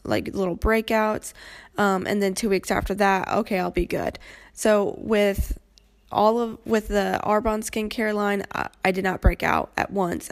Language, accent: English, American